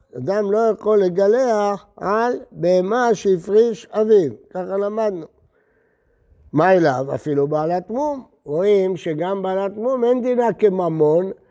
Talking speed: 115 wpm